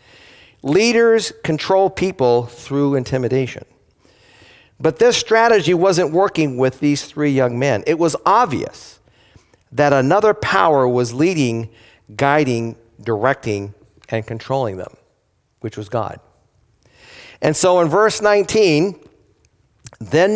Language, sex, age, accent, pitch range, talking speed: English, male, 50-69, American, 120-190 Hz, 110 wpm